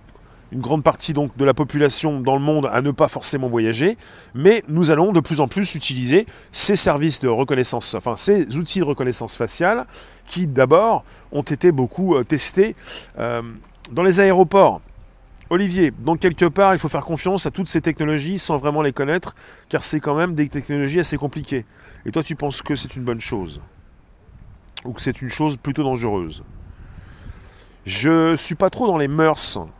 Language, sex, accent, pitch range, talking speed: French, male, French, 125-160 Hz, 185 wpm